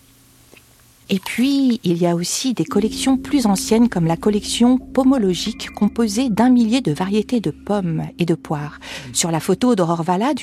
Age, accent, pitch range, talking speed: 50-69, French, 180-240 Hz, 165 wpm